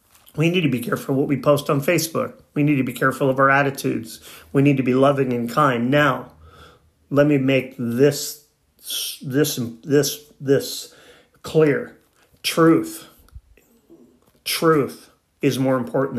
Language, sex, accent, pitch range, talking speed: English, male, American, 120-140 Hz, 145 wpm